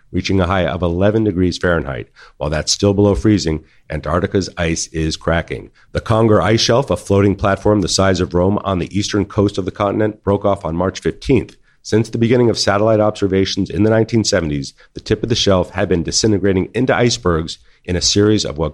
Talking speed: 200 wpm